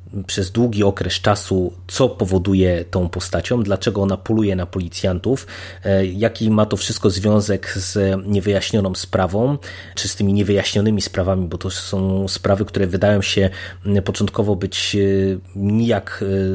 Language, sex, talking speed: Polish, male, 130 wpm